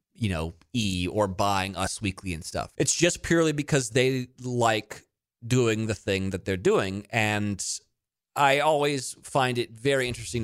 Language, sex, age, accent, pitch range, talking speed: English, male, 30-49, American, 90-125 Hz, 160 wpm